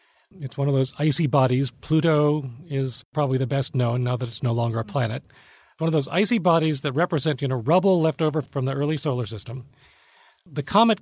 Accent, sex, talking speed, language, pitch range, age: American, male, 205 wpm, English, 125-155 Hz, 40-59